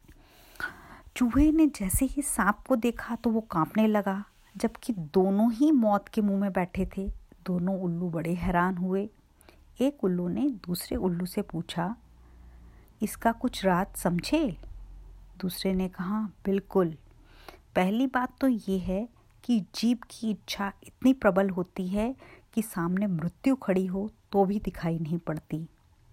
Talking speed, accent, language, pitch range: 145 wpm, native, Hindi, 175-235 Hz